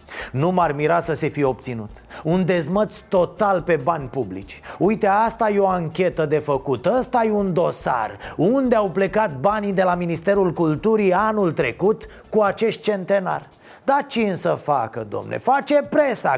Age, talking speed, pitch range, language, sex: 30-49, 160 wpm, 155-200 Hz, Romanian, male